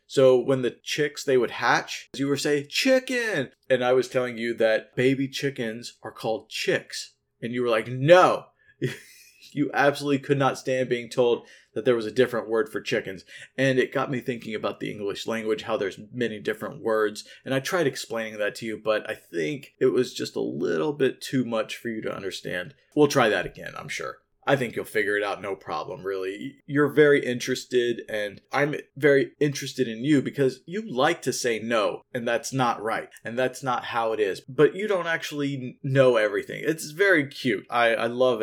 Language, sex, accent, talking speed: English, male, American, 205 wpm